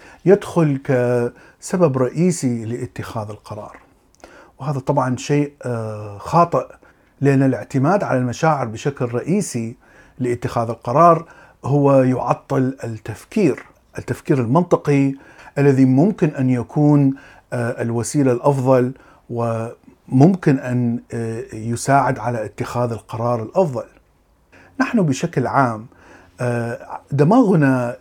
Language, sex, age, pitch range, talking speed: Arabic, male, 50-69, 120-150 Hz, 85 wpm